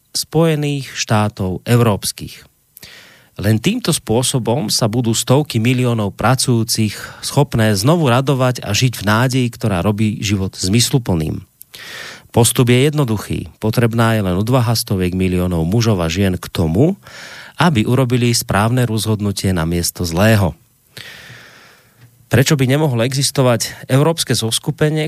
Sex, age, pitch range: male, 30-49, 105-130 Hz